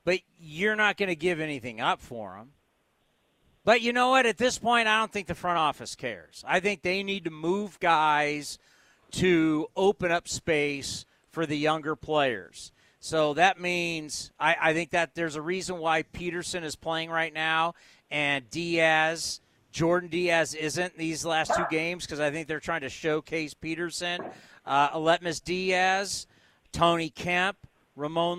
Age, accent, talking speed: 50-69, American, 165 wpm